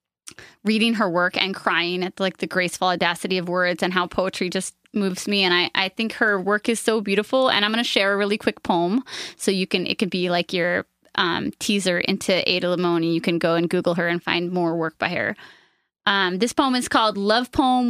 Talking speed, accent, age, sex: 230 wpm, American, 20-39, female